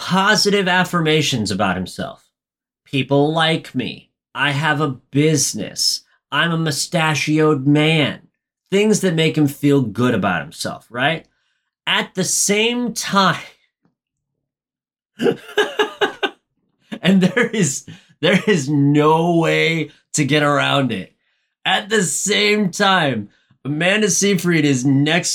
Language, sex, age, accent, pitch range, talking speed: English, male, 30-49, American, 140-180 Hz, 110 wpm